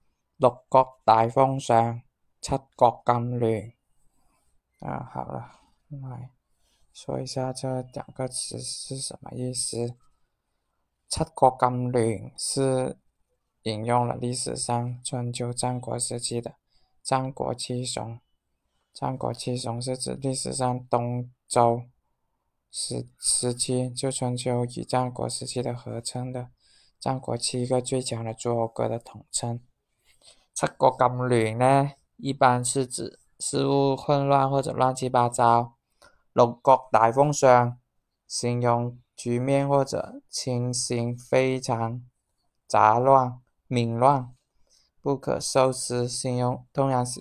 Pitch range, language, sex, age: 120-130 Hz, Chinese, male, 20-39